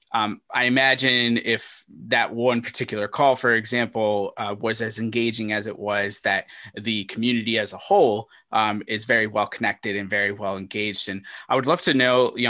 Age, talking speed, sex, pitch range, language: 20-39, 180 wpm, male, 105-120 Hz, English